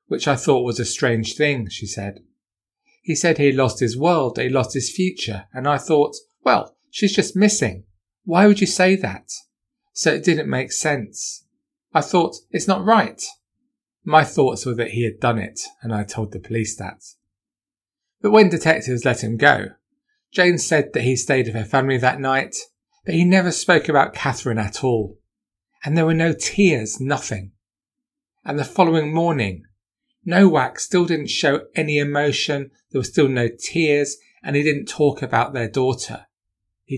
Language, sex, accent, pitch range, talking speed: English, male, British, 110-165 Hz, 175 wpm